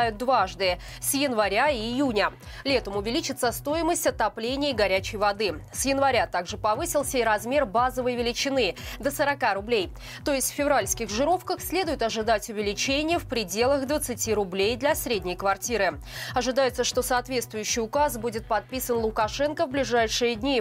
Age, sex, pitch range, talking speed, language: 20-39, female, 210-275 Hz, 140 wpm, Russian